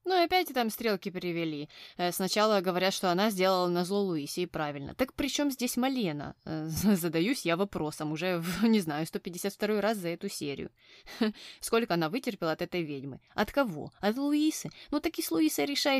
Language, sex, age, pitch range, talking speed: Russian, female, 20-39, 165-220 Hz, 180 wpm